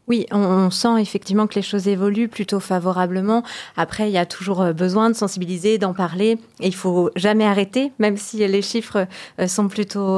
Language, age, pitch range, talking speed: French, 30-49, 190-220 Hz, 190 wpm